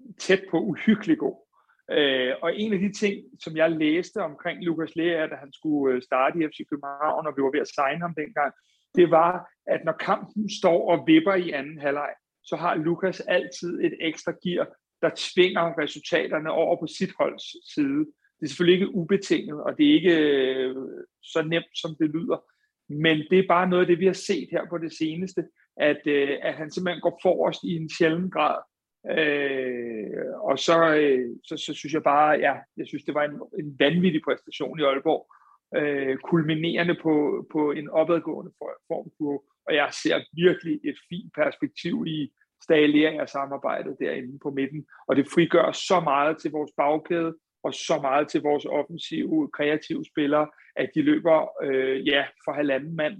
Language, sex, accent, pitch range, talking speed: Danish, male, native, 145-180 Hz, 180 wpm